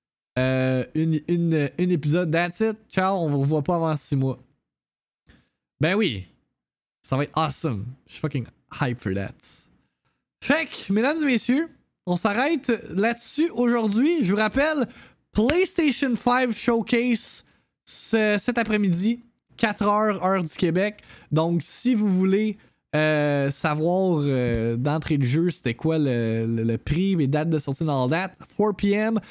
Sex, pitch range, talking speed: male, 140-210 Hz, 145 wpm